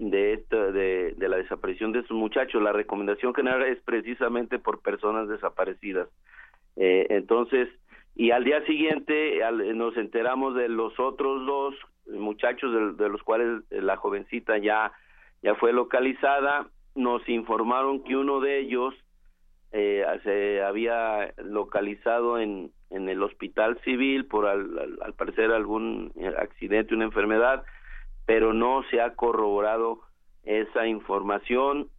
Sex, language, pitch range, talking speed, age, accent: male, Spanish, 105-130 Hz, 135 wpm, 50-69, Mexican